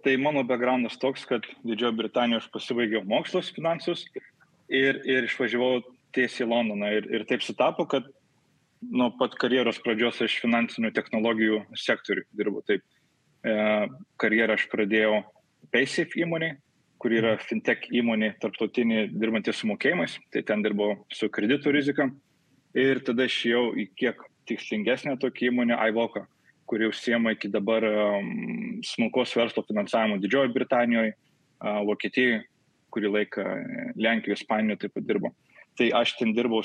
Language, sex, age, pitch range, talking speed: English, male, 20-39, 110-135 Hz, 130 wpm